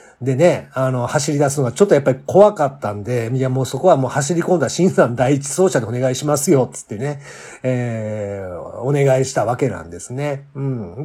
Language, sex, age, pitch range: Japanese, male, 50-69, 120-150 Hz